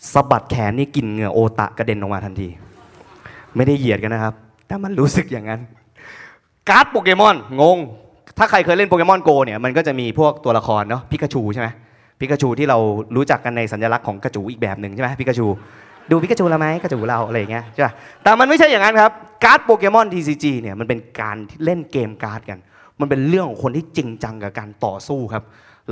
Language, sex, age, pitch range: Thai, male, 20-39, 110-145 Hz